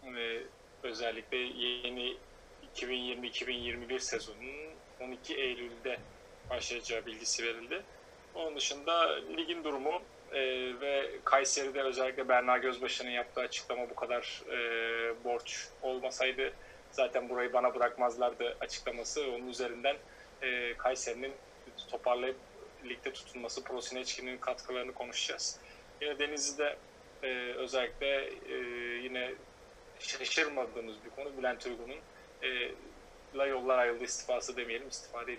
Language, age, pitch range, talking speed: Turkish, 30-49, 120-140 Hz, 95 wpm